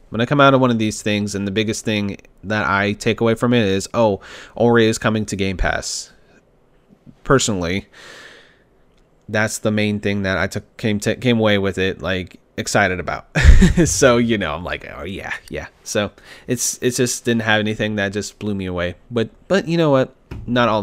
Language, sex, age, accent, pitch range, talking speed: English, male, 30-49, American, 105-130 Hz, 205 wpm